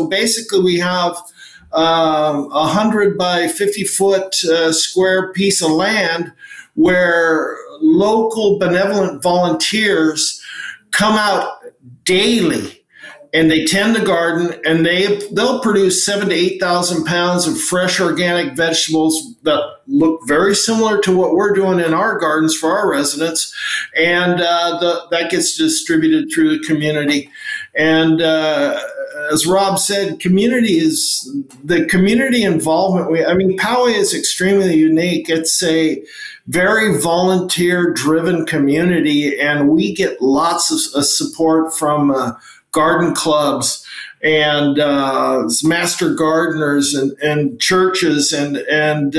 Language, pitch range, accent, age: English, 160-205 Hz, American, 50-69